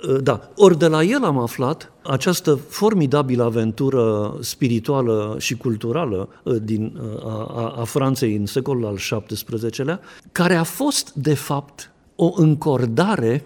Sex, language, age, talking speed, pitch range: male, Romanian, 50-69, 130 wpm, 110-145 Hz